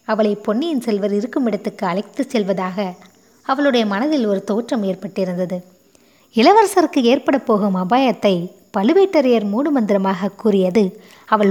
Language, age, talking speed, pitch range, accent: Tamil, 20-39, 105 wpm, 195-245 Hz, native